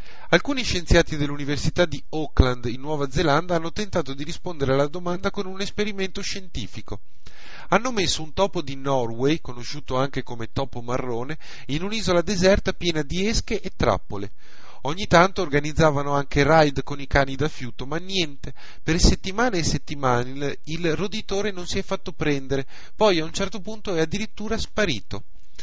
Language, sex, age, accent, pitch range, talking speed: Italian, male, 30-49, native, 140-185 Hz, 160 wpm